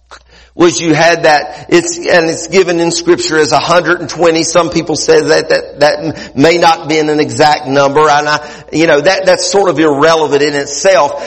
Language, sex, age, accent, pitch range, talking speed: English, male, 50-69, American, 150-220 Hz, 185 wpm